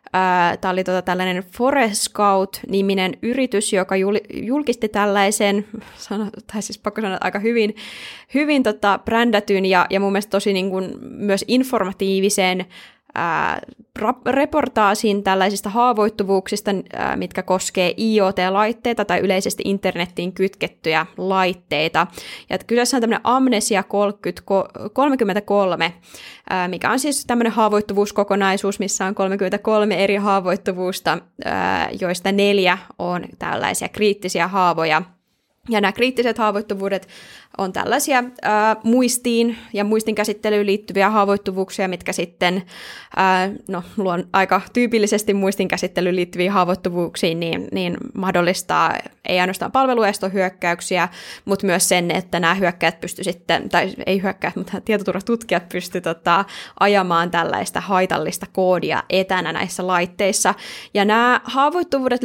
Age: 20-39